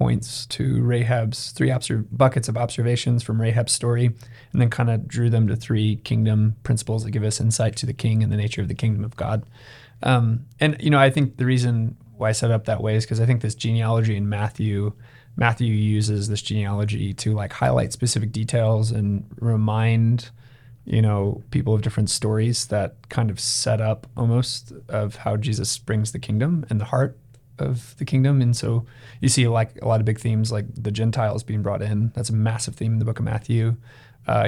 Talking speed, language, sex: 205 wpm, English, male